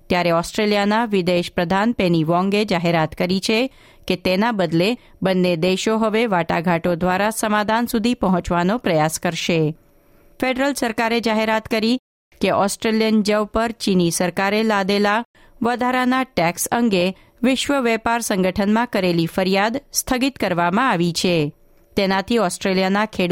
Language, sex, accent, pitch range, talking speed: Gujarati, female, native, 175-230 Hz, 95 wpm